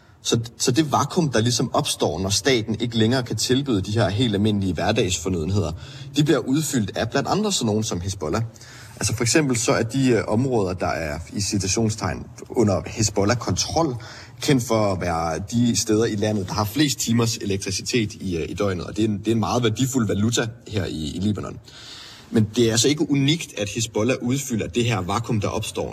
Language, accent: Danish, native